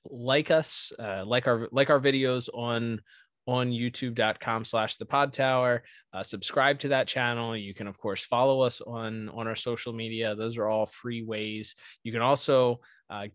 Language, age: English, 20-39